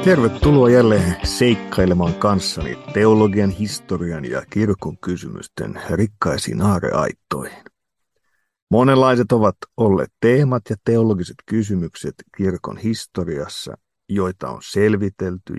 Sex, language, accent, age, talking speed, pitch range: male, Finnish, native, 50-69, 90 wpm, 90-115 Hz